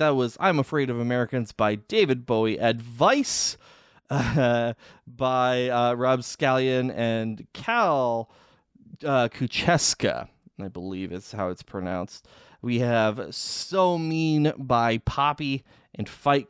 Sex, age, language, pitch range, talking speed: male, 20-39, English, 110-150 Hz, 115 wpm